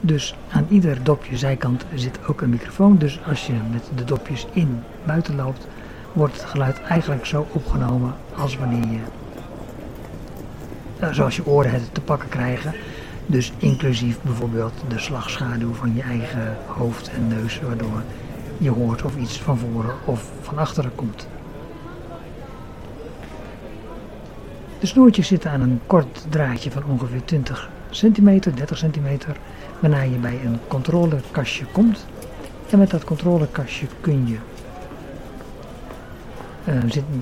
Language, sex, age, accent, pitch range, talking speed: English, male, 60-79, Dutch, 120-155 Hz, 130 wpm